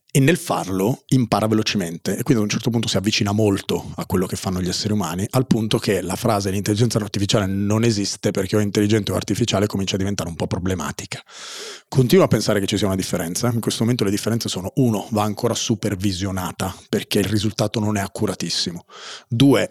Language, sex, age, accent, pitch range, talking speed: Italian, male, 30-49, native, 100-115 Hz, 200 wpm